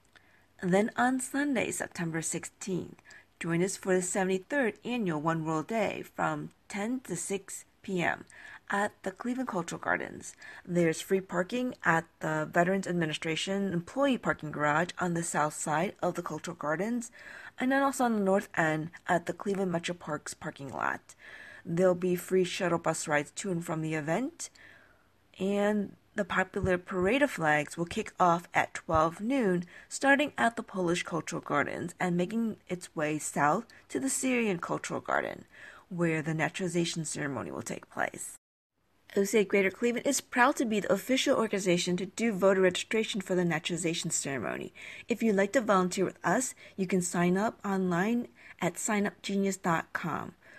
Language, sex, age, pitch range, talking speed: English, female, 40-59, 170-215 Hz, 160 wpm